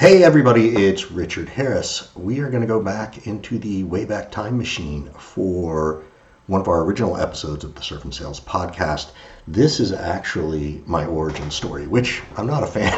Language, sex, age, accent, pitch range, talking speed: English, male, 50-69, American, 80-105 Hz, 180 wpm